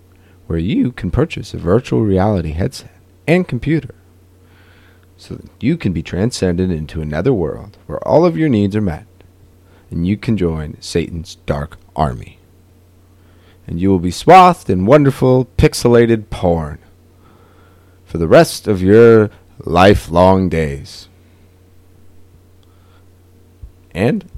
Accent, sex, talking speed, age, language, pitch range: American, male, 125 wpm, 30-49, English, 90-100 Hz